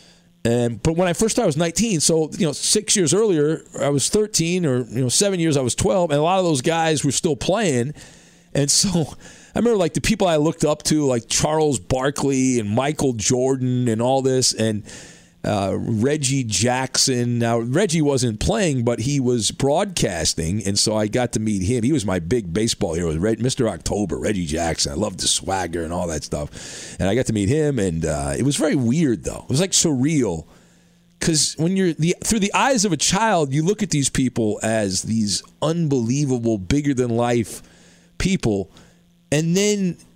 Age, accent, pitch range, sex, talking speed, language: 40-59, American, 110-165 Hz, male, 200 wpm, English